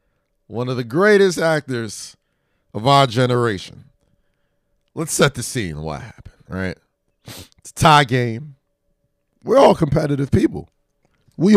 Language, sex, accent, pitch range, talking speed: English, male, American, 85-130 Hz, 125 wpm